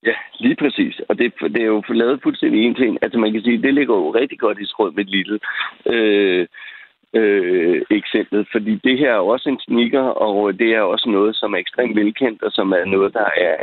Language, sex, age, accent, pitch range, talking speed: Danish, male, 60-79, native, 100-150 Hz, 225 wpm